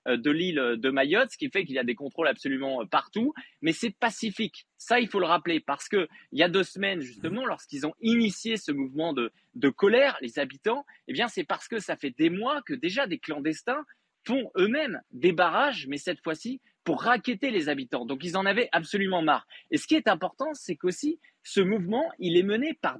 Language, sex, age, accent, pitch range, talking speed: French, male, 20-39, French, 170-245 Hz, 215 wpm